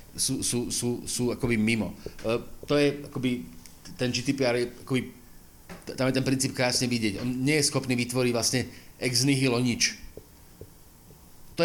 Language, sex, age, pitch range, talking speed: Slovak, male, 30-49, 105-135 Hz, 155 wpm